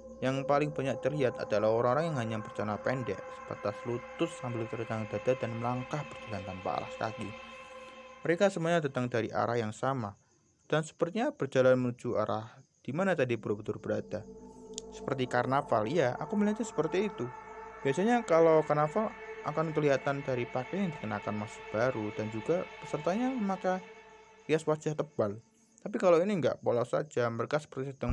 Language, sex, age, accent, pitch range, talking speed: Indonesian, male, 20-39, native, 105-170 Hz, 150 wpm